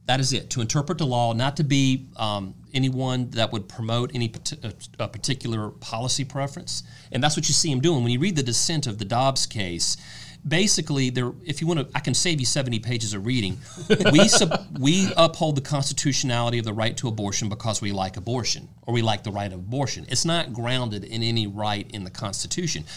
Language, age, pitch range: English, 40-59, 105-135 Hz